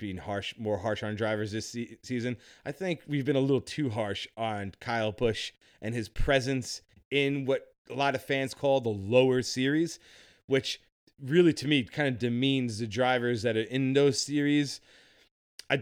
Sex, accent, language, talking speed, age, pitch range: male, American, English, 180 wpm, 30-49, 110-150 Hz